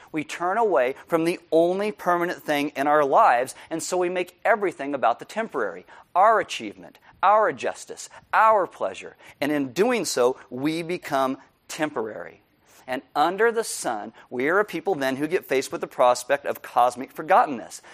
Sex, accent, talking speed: male, American, 165 wpm